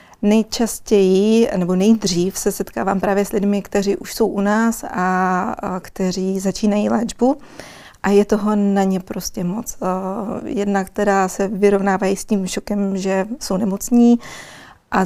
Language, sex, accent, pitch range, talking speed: Czech, female, native, 185-210 Hz, 140 wpm